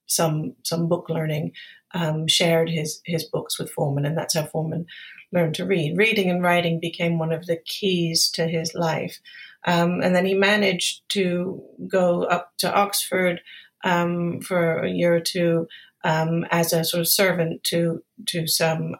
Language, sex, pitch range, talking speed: English, female, 165-190 Hz, 170 wpm